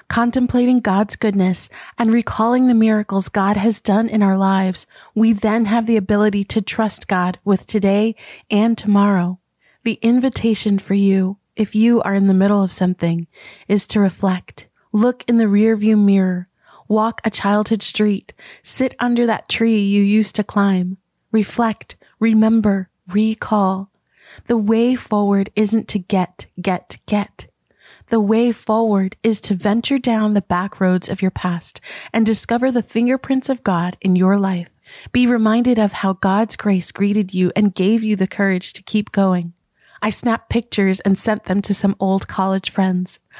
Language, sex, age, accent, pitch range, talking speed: English, female, 30-49, American, 195-225 Hz, 160 wpm